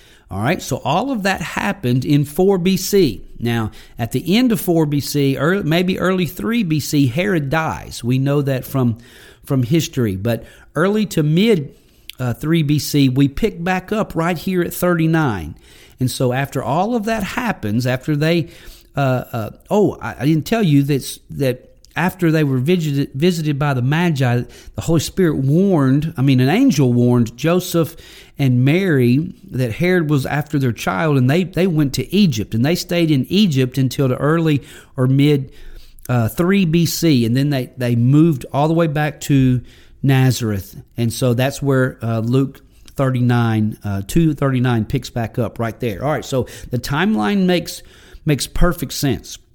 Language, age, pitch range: English, 50-69, 125-170 Hz